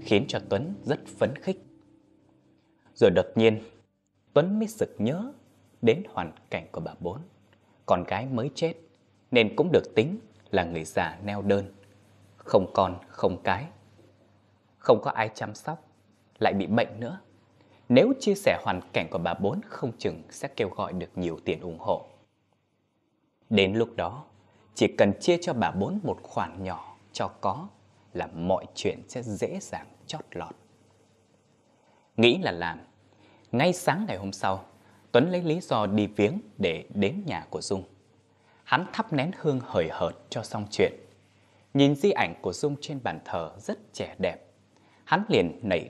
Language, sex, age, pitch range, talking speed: Vietnamese, male, 20-39, 100-135 Hz, 165 wpm